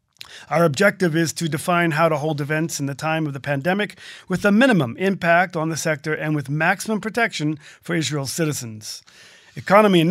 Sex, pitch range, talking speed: male, 150-185 Hz, 185 wpm